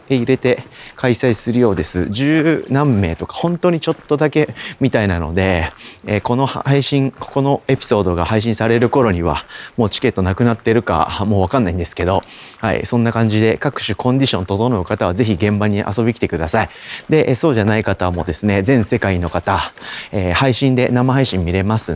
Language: Japanese